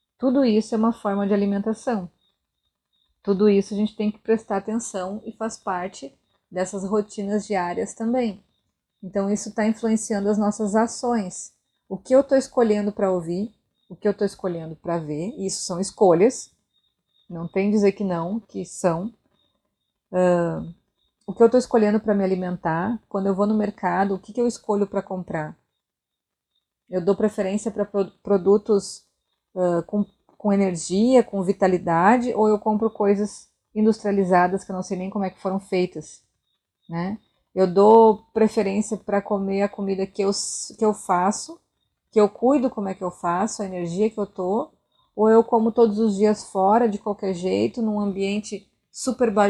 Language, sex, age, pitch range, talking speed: Portuguese, female, 30-49, 190-220 Hz, 165 wpm